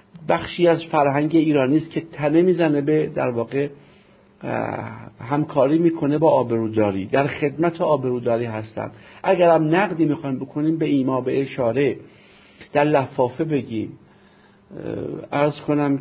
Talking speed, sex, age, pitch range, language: 115 wpm, male, 50-69, 130-160 Hz, Persian